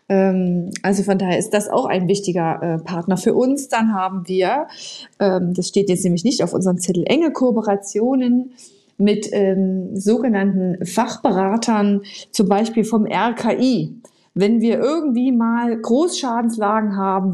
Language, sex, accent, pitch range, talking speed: German, female, German, 200-245 Hz, 130 wpm